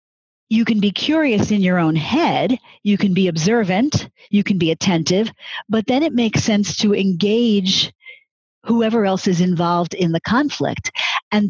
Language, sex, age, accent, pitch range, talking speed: English, female, 50-69, American, 175-225 Hz, 160 wpm